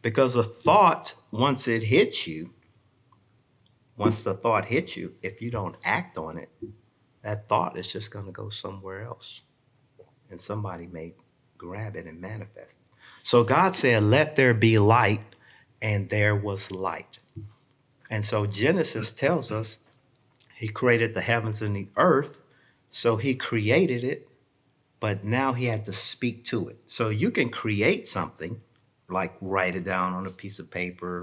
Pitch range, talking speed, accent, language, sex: 100-125 Hz, 160 wpm, American, English, male